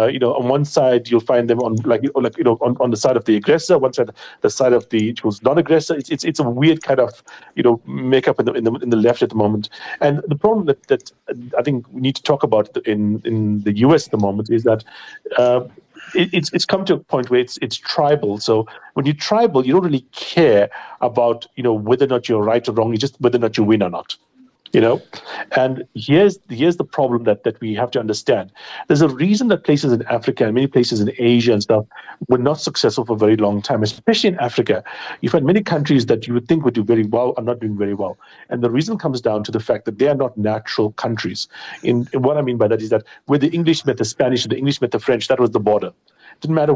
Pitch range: 115-145 Hz